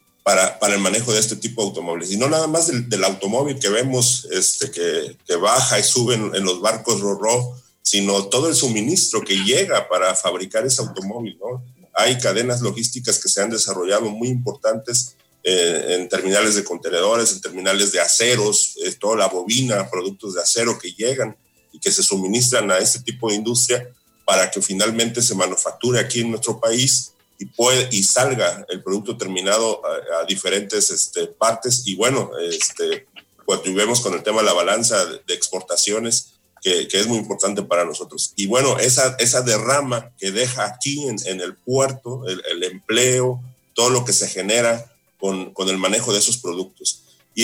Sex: male